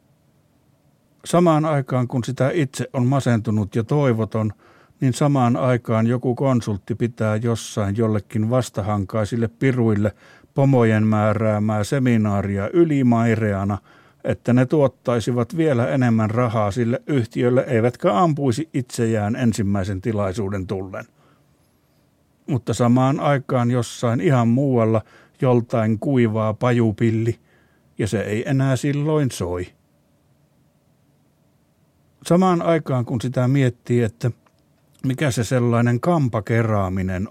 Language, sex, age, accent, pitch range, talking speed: Finnish, male, 60-79, native, 110-130 Hz, 100 wpm